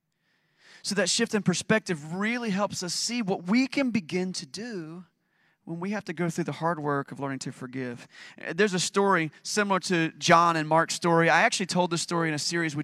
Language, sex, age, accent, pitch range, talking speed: English, male, 30-49, American, 145-185 Hz, 215 wpm